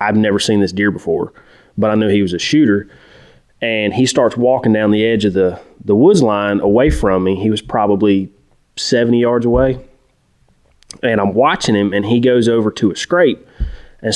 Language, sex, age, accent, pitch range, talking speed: English, male, 30-49, American, 100-120 Hz, 195 wpm